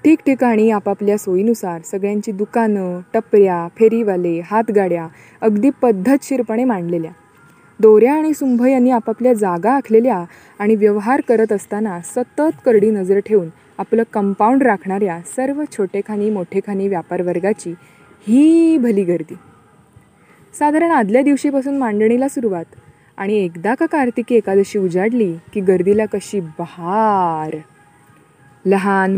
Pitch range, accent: 190-245 Hz, native